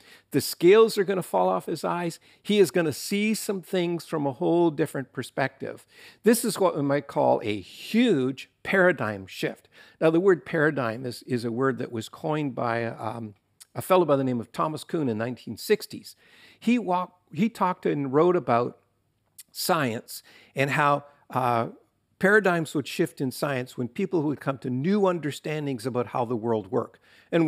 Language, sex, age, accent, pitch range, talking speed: English, male, 50-69, American, 125-170 Hz, 185 wpm